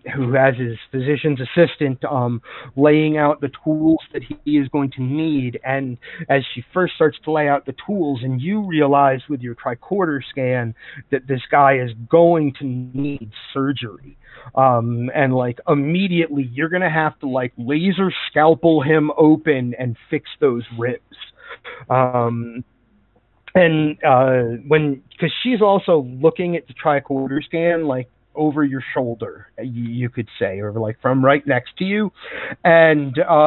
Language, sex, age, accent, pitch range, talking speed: English, male, 40-59, American, 125-160 Hz, 155 wpm